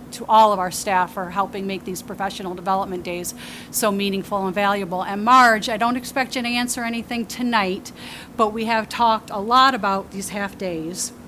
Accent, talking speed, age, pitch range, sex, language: American, 190 wpm, 40-59, 200-230 Hz, female, English